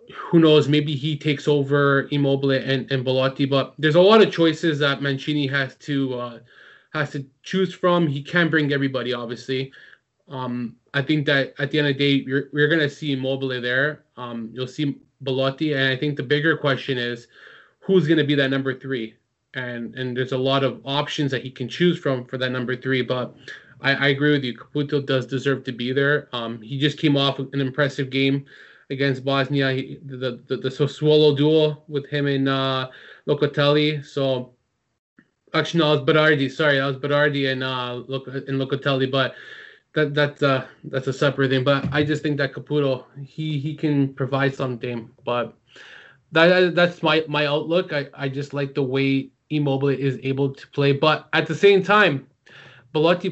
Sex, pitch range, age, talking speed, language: male, 130-150 Hz, 20-39, 190 wpm, English